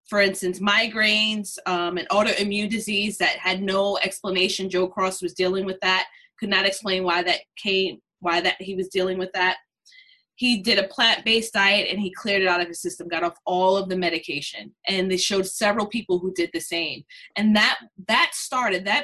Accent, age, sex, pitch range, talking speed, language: American, 20-39, female, 185-225 Hz, 200 wpm, English